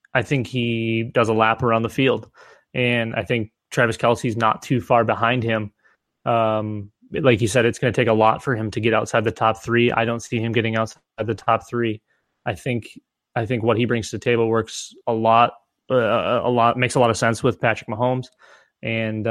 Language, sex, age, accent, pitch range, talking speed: English, male, 20-39, American, 110-125 Hz, 220 wpm